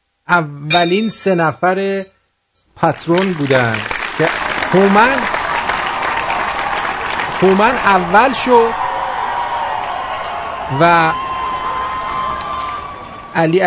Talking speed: 55 wpm